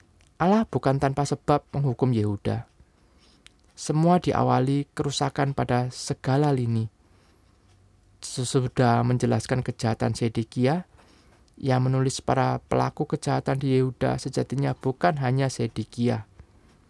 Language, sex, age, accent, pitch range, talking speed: Indonesian, male, 20-39, native, 105-155 Hz, 95 wpm